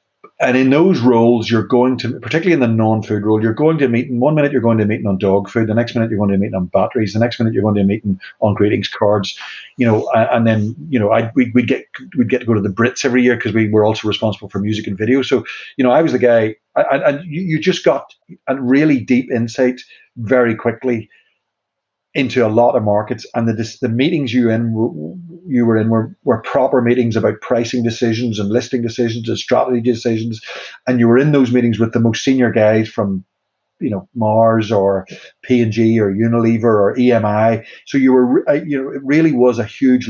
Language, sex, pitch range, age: English, male, 110-125 Hz, 40-59